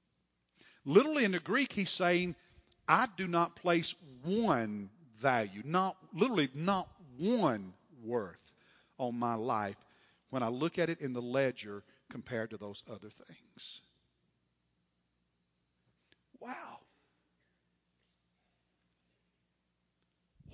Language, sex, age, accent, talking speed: English, male, 50-69, American, 100 wpm